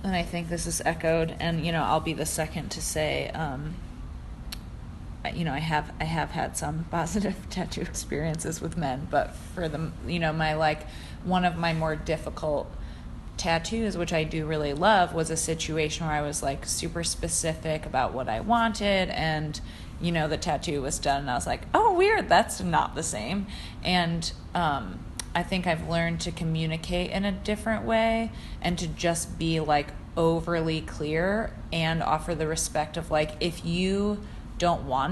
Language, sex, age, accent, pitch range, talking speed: English, female, 30-49, American, 155-180 Hz, 180 wpm